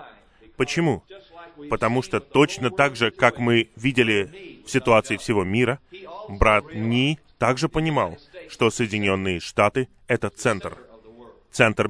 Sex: male